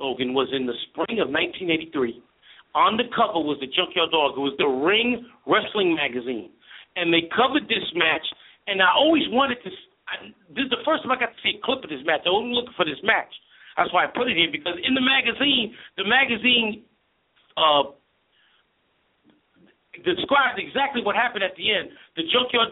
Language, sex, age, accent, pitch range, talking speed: English, male, 50-69, American, 195-265 Hz, 195 wpm